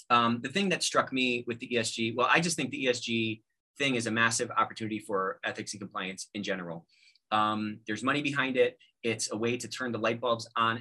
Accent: American